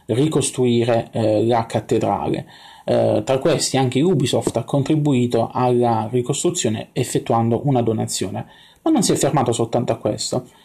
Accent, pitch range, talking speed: native, 115-150 Hz, 135 wpm